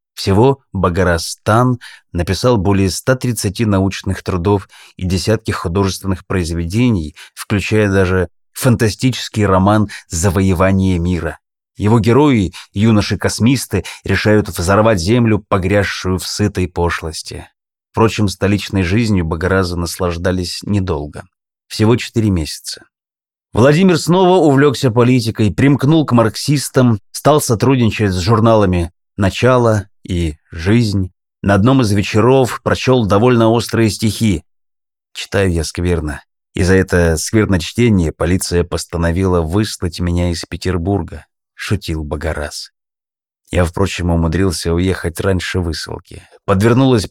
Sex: male